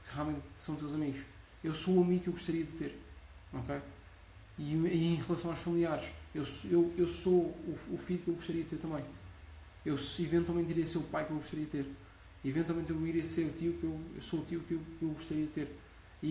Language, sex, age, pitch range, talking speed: Portuguese, male, 20-39, 140-170 Hz, 240 wpm